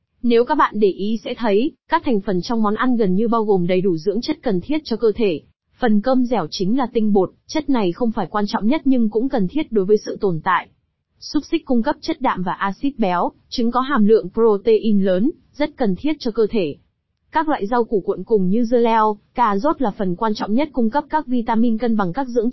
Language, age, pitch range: Vietnamese, 20-39, 200-250 Hz